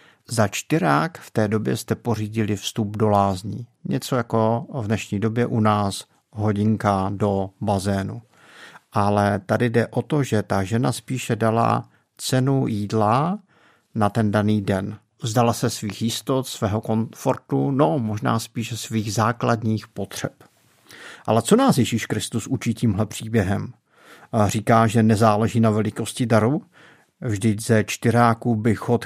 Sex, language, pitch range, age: male, Czech, 105-120 Hz, 50-69